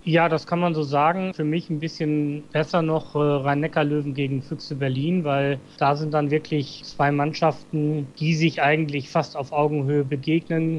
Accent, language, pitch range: German, German, 150-165 Hz